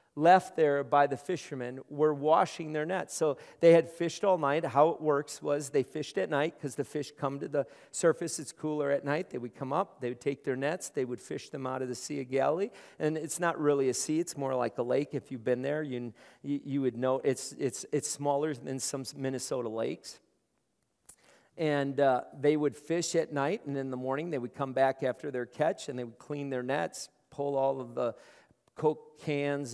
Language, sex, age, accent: English, male, 50-69, American